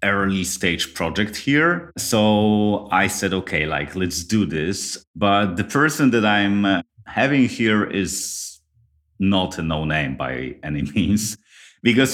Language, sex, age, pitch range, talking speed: English, male, 30-49, 85-110 Hz, 140 wpm